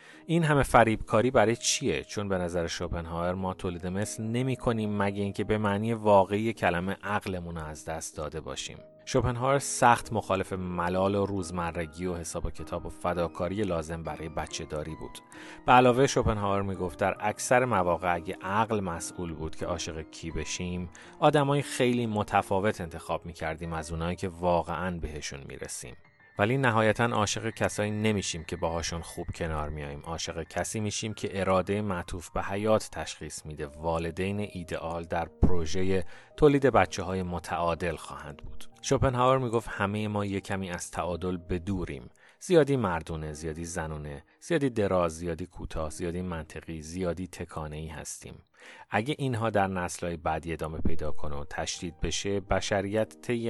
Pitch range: 85-105 Hz